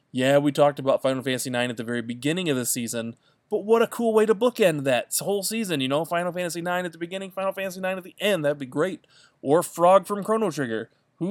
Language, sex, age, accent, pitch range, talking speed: English, male, 20-39, American, 120-145 Hz, 250 wpm